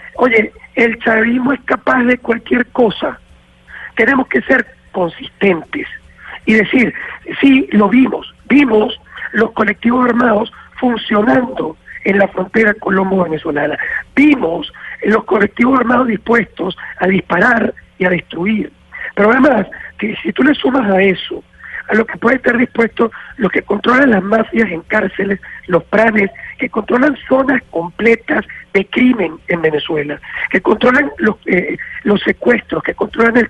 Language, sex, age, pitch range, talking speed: Spanish, male, 60-79, 195-255 Hz, 140 wpm